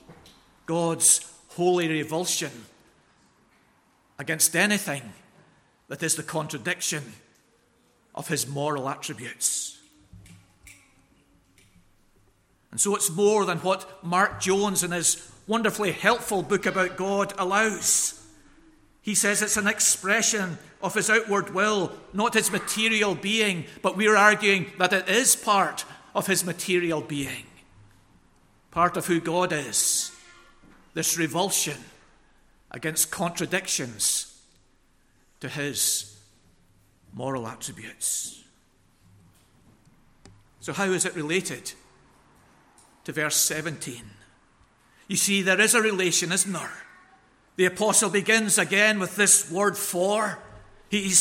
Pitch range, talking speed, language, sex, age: 145-205 Hz, 105 wpm, English, male, 40-59